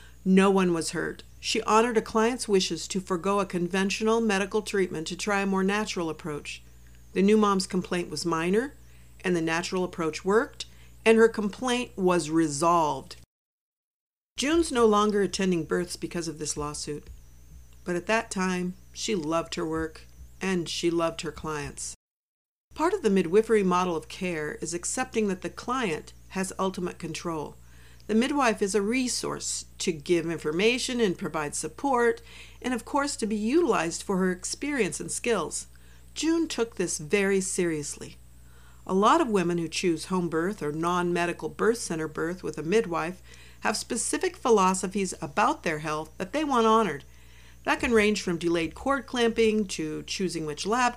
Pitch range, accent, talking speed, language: 160-220 Hz, American, 160 wpm, English